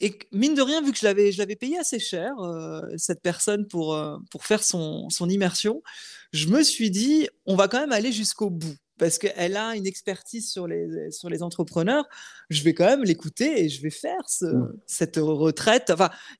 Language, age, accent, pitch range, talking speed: French, 20-39, French, 175-230 Hz, 210 wpm